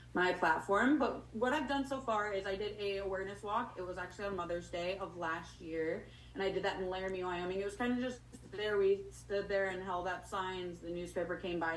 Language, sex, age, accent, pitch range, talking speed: English, female, 20-39, American, 175-210 Hz, 240 wpm